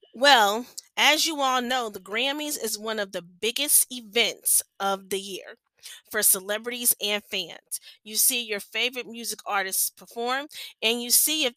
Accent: American